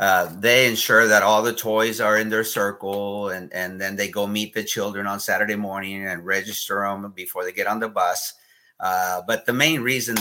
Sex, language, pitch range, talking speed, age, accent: male, English, 95-110 Hz, 210 wpm, 50-69, American